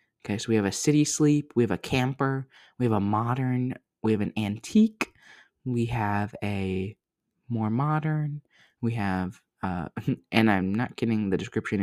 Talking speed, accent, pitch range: 165 wpm, American, 105-140 Hz